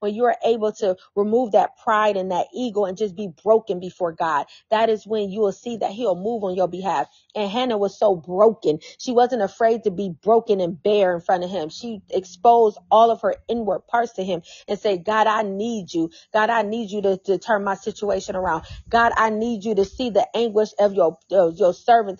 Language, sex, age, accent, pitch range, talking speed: English, female, 30-49, American, 190-230 Hz, 220 wpm